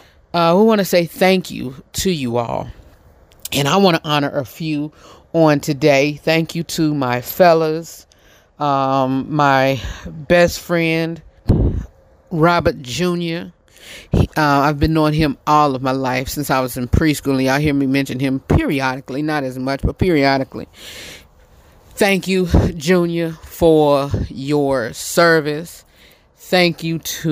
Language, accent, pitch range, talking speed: English, American, 130-165 Hz, 145 wpm